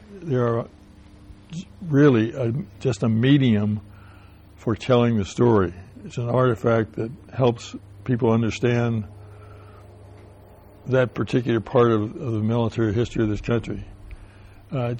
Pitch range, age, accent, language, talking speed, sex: 105-120 Hz, 60-79, American, English, 120 wpm, male